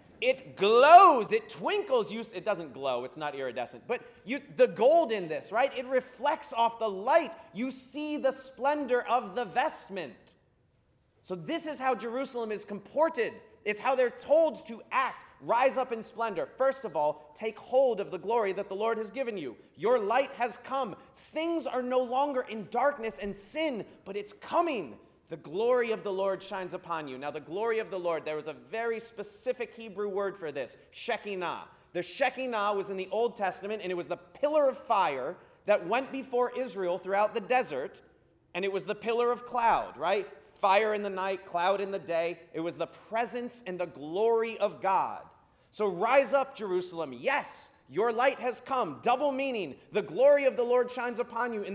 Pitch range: 190-265 Hz